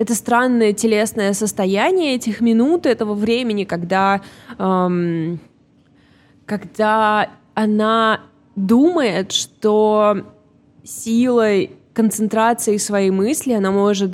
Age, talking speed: 20-39, 85 wpm